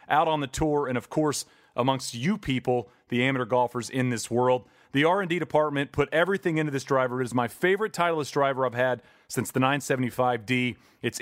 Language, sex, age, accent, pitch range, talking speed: English, male, 40-59, American, 125-155 Hz, 195 wpm